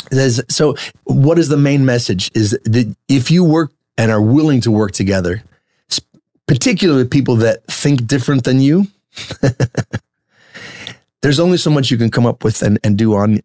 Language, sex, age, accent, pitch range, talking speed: English, male, 30-49, American, 110-135 Hz, 165 wpm